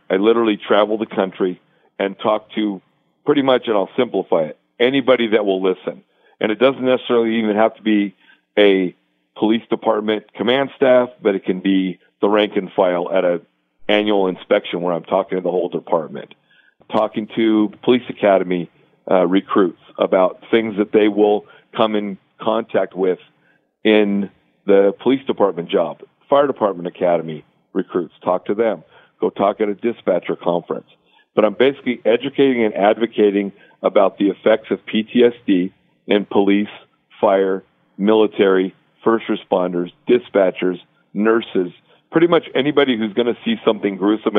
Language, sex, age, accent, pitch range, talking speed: English, male, 50-69, American, 95-115 Hz, 150 wpm